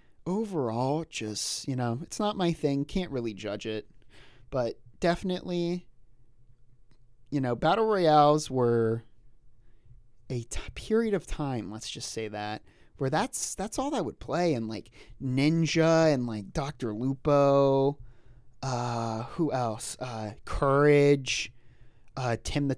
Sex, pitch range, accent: male, 115-145 Hz, American